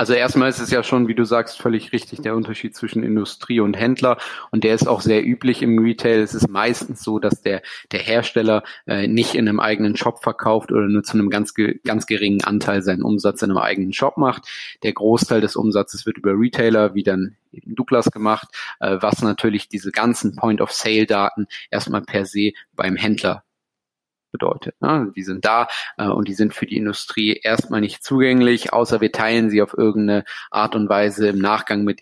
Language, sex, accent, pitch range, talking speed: German, male, German, 105-115 Hz, 195 wpm